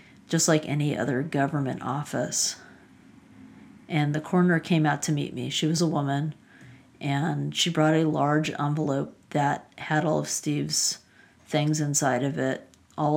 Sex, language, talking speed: female, English, 155 wpm